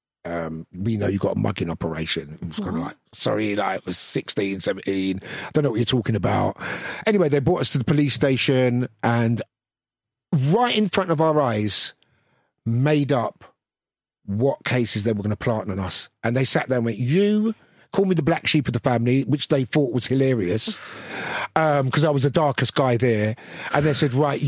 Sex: male